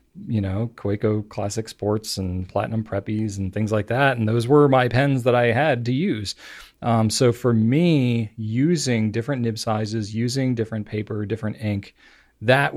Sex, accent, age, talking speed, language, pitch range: male, American, 30-49, 170 wpm, English, 105-125 Hz